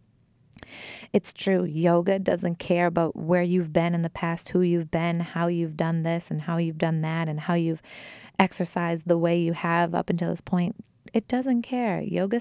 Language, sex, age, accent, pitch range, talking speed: English, female, 20-39, American, 155-185 Hz, 195 wpm